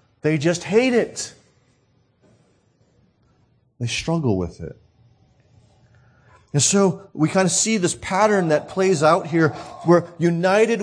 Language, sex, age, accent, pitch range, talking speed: English, male, 40-59, American, 125-190 Hz, 120 wpm